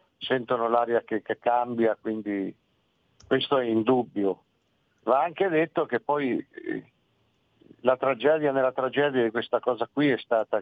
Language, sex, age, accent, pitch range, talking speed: Italian, male, 50-69, native, 120-150 Hz, 145 wpm